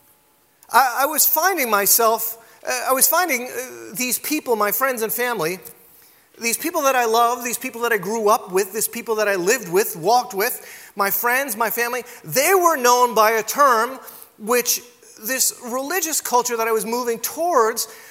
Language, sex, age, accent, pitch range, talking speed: English, male, 30-49, American, 195-260 Hz, 180 wpm